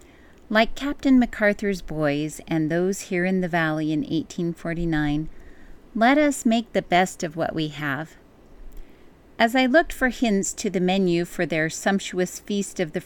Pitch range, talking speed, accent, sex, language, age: 165-220 Hz, 160 wpm, American, female, English, 40-59